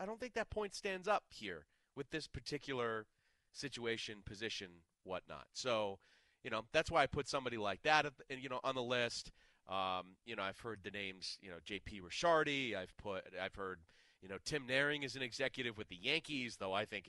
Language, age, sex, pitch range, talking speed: English, 30-49, male, 95-130 Hz, 205 wpm